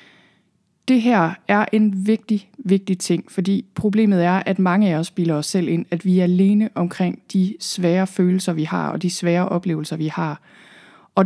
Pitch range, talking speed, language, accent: 180-205 Hz, 185 wpm, Danish, native